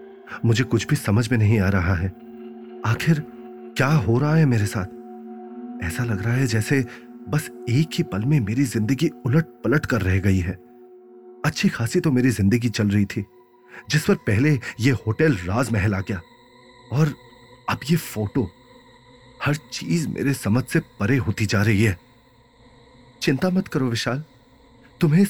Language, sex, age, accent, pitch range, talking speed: Hindi, male, 30-49, native, 105-135 Hz, 165 wpm